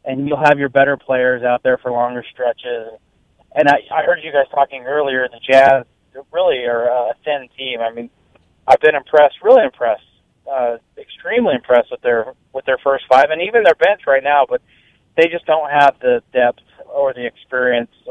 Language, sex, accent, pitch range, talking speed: English, male, American, 120-145 Hz, 190 wpm